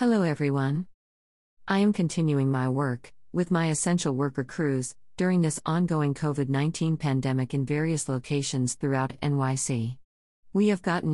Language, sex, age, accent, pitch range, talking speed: English, female, 50-69, American, 130-160 Hz, 135 wpm